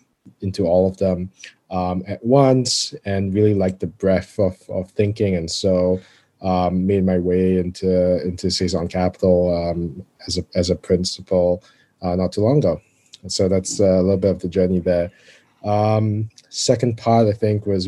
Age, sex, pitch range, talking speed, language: 20-39, male, 90-105 Hz, 175 wpm, English